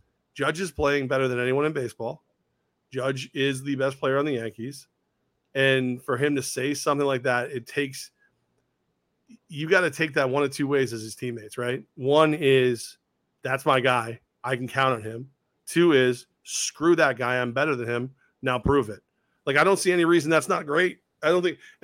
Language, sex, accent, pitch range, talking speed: English, male, American, 130-180 Hz, 205 wpm